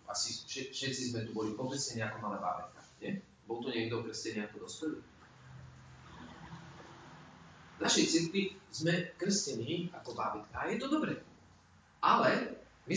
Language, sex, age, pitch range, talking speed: Slovak, male, 40-59, 110-160 Hz, 130 wpm